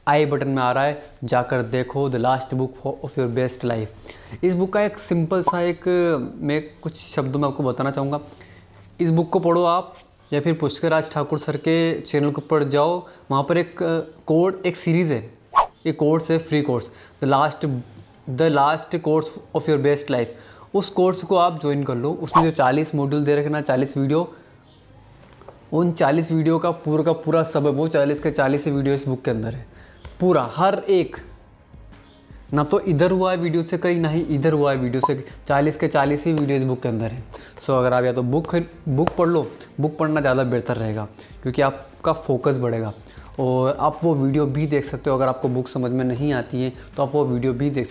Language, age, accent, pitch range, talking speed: Hindi, 20-39, native, 130-160 Hz, 210 wpm